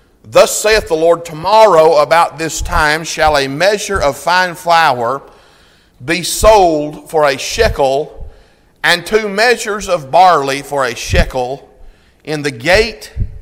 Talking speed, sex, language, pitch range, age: 135 wpm, male, English, 160-200 Hz, 40-59